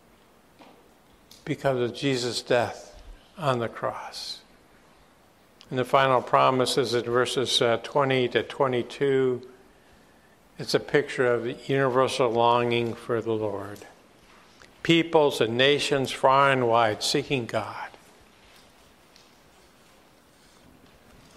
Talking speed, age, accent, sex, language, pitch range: 100 wpm, 50-69, American, male, English, 115-140 Hz